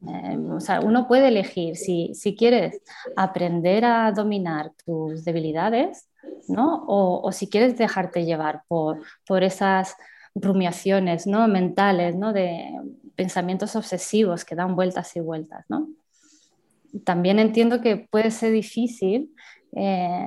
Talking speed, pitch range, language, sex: 130 wpm, 185-235 Hz, Spanish, female